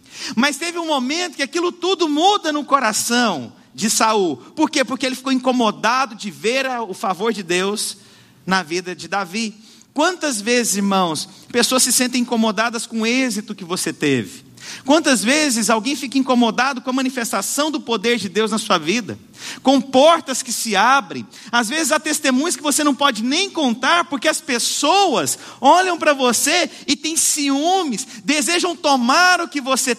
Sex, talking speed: male, 170 wpm